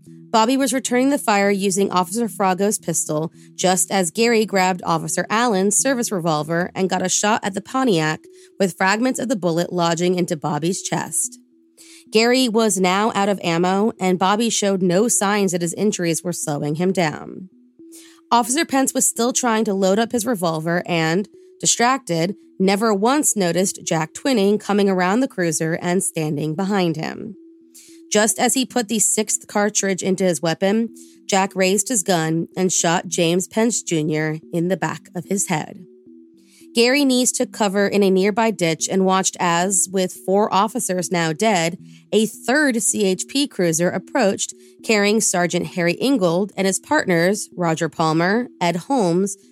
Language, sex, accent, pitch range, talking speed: English, female, American, 170-225 Hz, 160 wpm